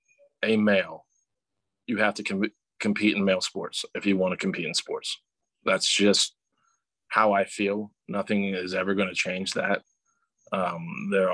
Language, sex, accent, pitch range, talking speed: English, male, American, 95-110 Hz, 160 wpm